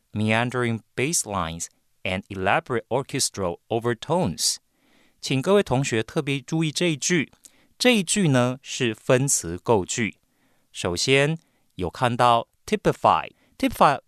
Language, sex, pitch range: Chinese, male, 110-165 Hz